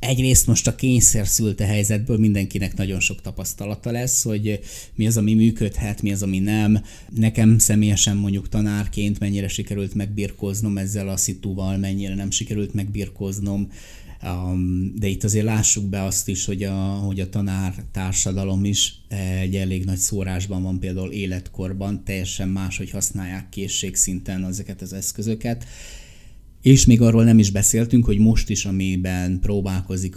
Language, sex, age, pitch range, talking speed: Hungarian, male, 20-39, 95-105 Hz, 140 wpm